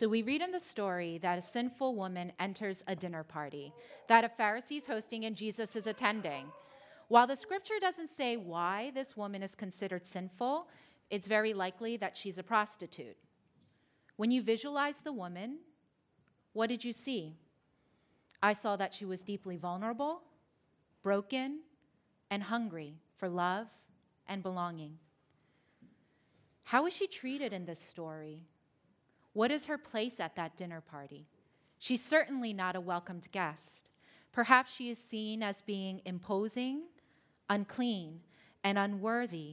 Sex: female